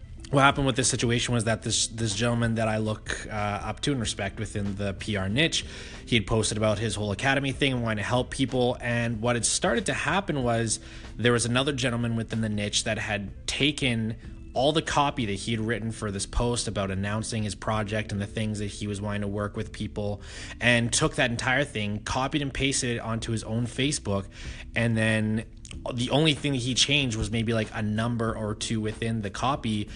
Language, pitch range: English, 105-120 Hz